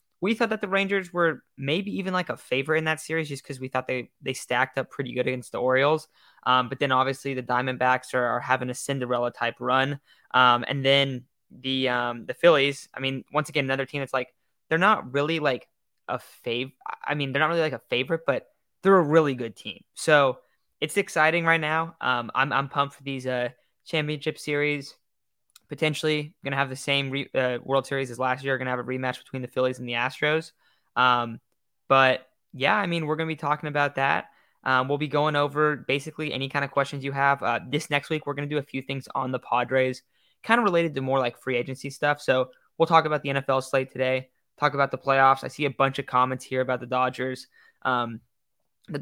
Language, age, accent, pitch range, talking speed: English, 10-29, American, 130-150 Hz, 225 wpm